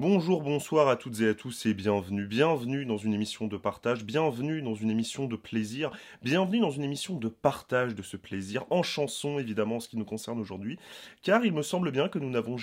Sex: male